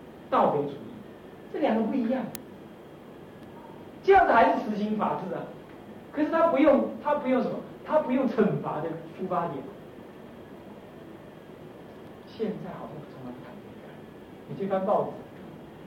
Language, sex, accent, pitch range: Chinese, male, native, 150-215 Hz